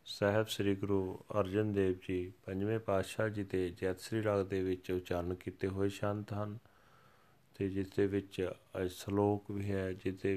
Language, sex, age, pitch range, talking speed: Punjabi, male, 30-49, 100-115 Hz, 170 wpm